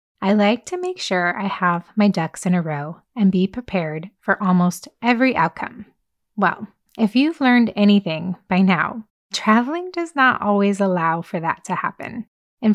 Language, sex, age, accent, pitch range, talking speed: English, female, 20-39, American, 185-240 Hz, 170 wpm